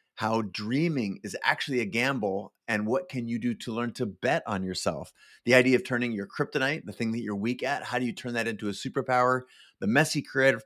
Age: 30-49